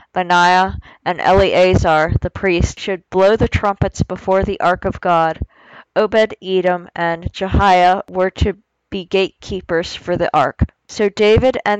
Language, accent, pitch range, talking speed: English, American, 175-195 Hz, 135 wpm